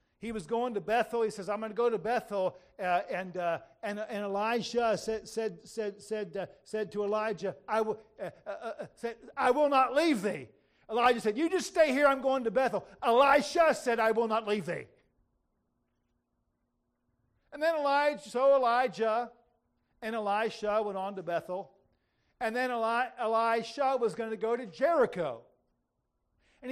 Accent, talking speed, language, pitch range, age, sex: American, 155 wpm, English, 215-265 Hz, 50-69, male